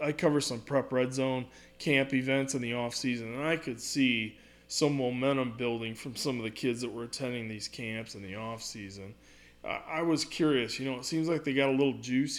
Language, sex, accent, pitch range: English, male, American, 115-145 Hz